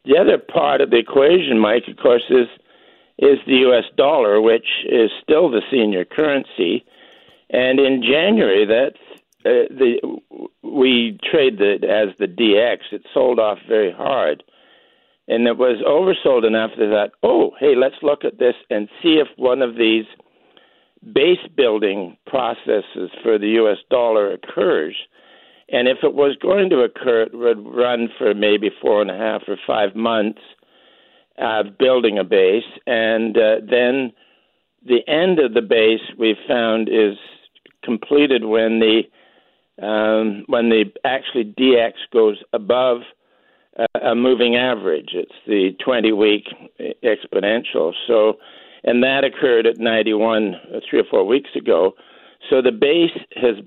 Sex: male